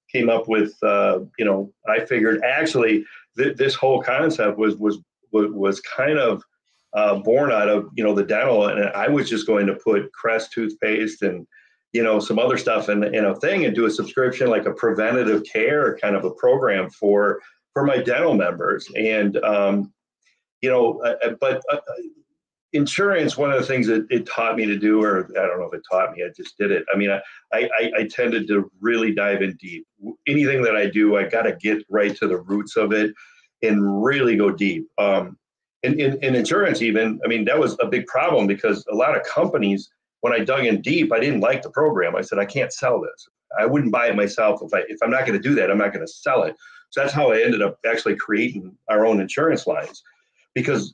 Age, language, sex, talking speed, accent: 40-59, English, male, 220 wpm, American